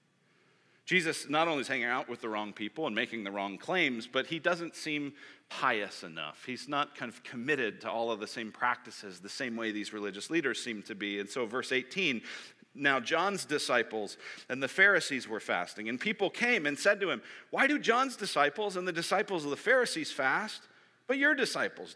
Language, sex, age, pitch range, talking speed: English, male, 40-59, 130-195 Hz, 200 wpm